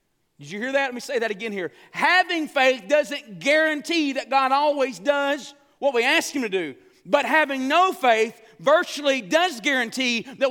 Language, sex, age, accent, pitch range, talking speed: English, male, 40-59, American, 200-265 Hz, 185 wpm